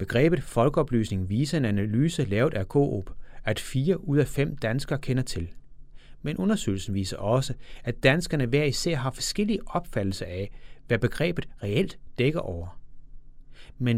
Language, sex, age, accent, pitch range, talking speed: Danish, male, 30-49, native, 115-145 Hz, 145 wpm